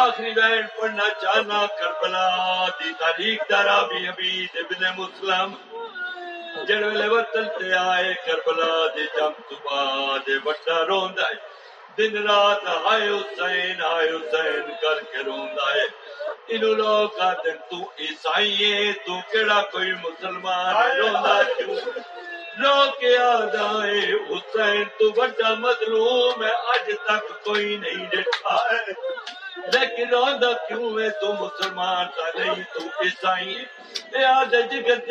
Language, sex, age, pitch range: Urdu, male, 60-79, 185-245 Hz